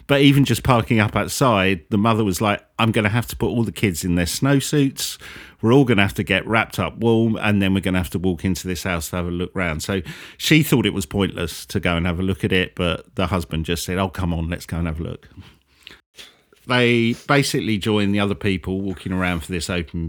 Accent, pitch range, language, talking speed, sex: British, 90-125 Hz, English, 260 wpm, male